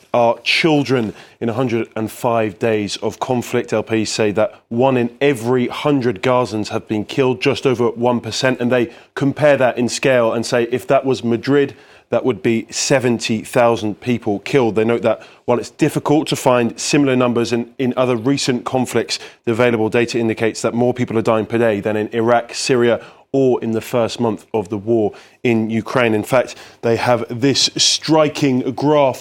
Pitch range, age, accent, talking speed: 115-130 Hz, 30-49, British, 175 wpm